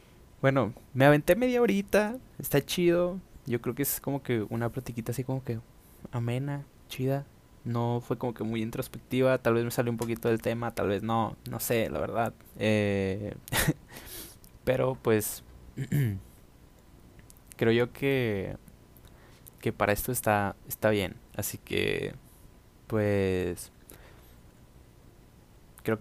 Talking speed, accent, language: 130 wpm, Mexican, Spanish